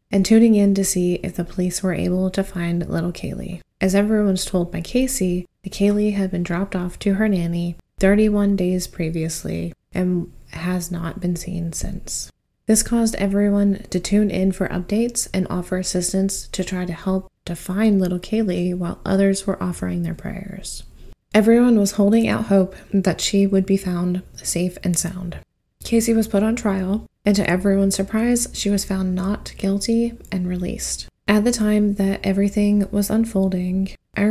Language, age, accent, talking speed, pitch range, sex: English, 20-39, American, 175 wpm, 185-205 Hz, female